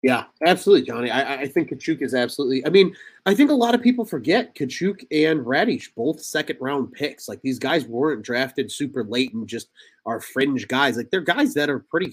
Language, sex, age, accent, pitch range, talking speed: English, male, 30-49, American, 115-175 Hz, 210 wpm